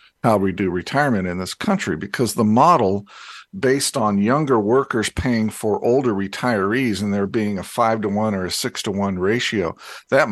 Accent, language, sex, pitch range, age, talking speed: American, English, male, 95-115 Hz, 50-69, 185 wpm